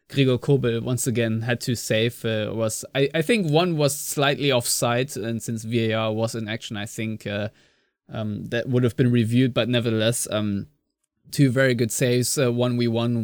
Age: 20-39